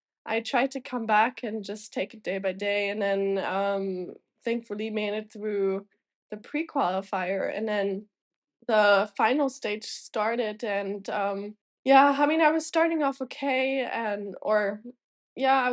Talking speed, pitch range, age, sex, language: 160 wpm, 205-255 Hz, 10-29, female, English